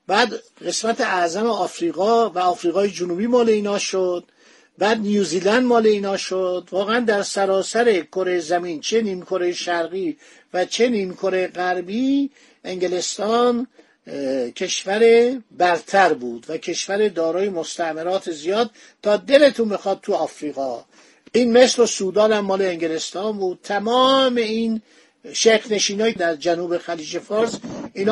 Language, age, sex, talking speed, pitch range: Persian, 50-69, male, 120 wpm, 175-220 Hz